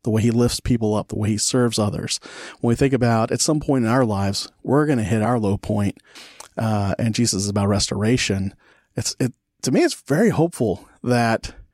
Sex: male